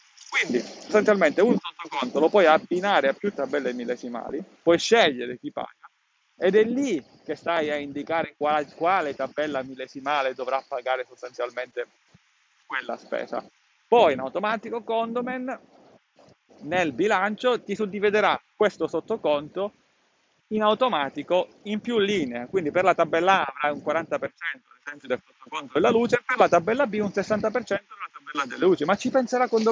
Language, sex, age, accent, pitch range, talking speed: Italian, male, 30-49, native, 135-210 Hz, 150 wpm